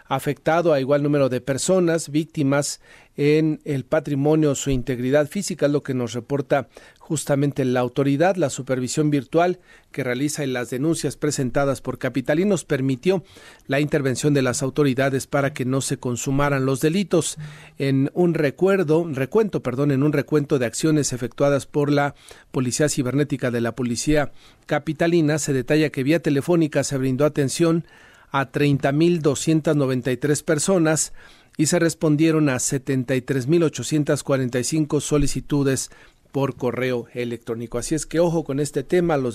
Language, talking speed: Spanish, 140 wpm